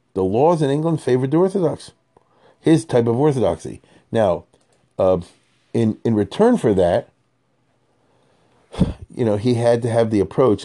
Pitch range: 95-115 Hz